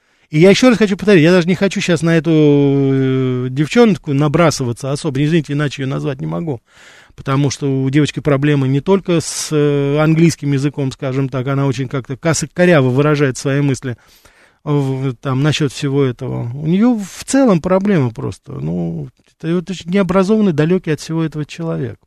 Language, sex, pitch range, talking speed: Russian, male, 135-175 Hz, 165 wpm